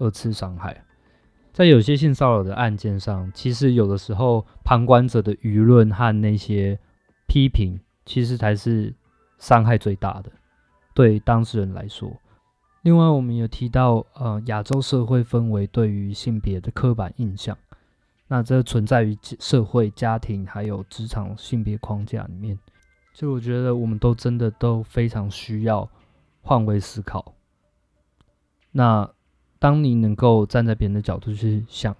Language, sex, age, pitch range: Chinese, male, 20-39, 100-120 Hz